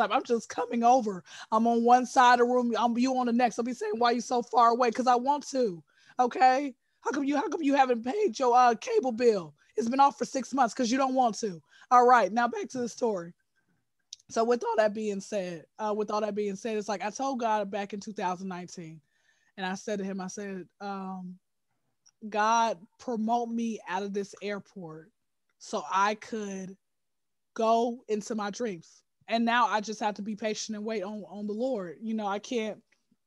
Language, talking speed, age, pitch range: English, 220 wpm, 20-39, 210-240 Hz